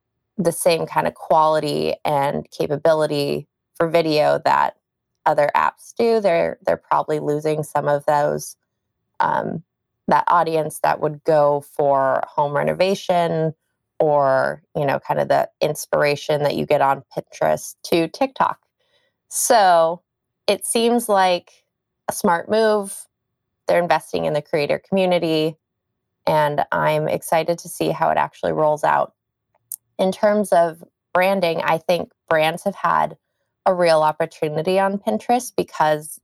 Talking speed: 135 wpm